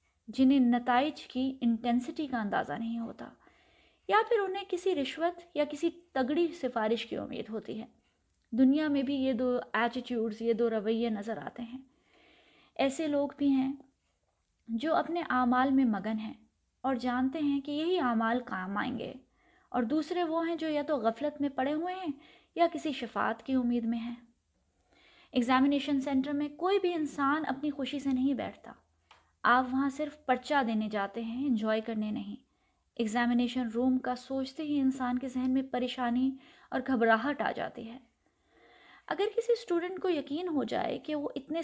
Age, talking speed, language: 20-39, 170 wpm, Urdu